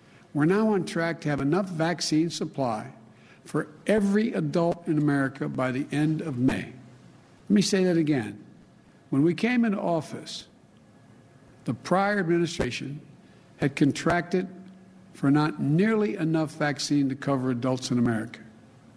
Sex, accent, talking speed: male, American, 140 wpm